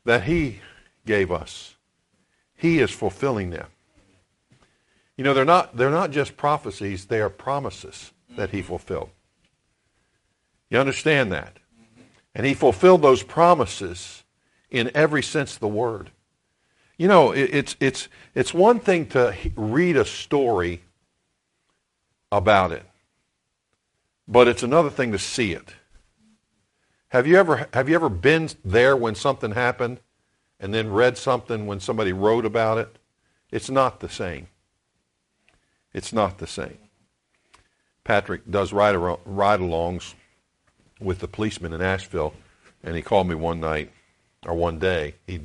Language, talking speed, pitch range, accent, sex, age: English, 135 wpm, 90-125 Hz, American, male, 50-69